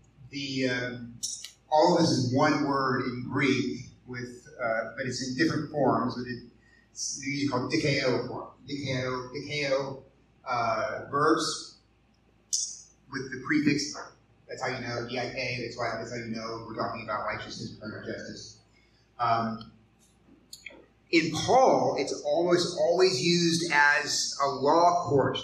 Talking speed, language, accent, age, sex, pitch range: 135 wpm, English, American, 30-49, male, 115-145 Hz